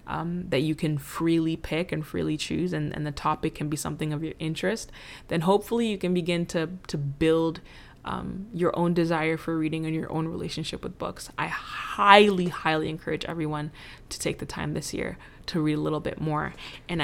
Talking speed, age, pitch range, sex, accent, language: 200 wpm, 20-39, 150-170 Hz, female, American, English